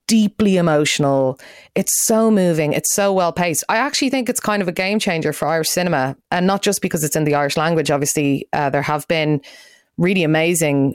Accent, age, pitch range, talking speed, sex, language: Irish, 30-49, 140-185 Hz, 195 wpm, female, English